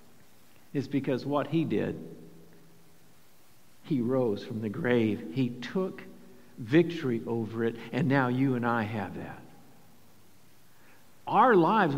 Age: 50-69